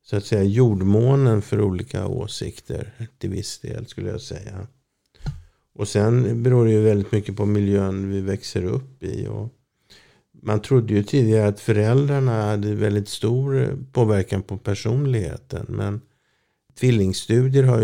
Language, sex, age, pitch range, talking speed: Swedish, male, 50-69, 100-120 Hz, 140 wpm